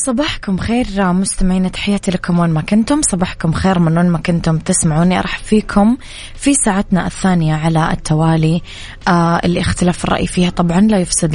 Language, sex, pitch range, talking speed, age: Arabic, female, 165-195 Hz, 155 wpm, 20-39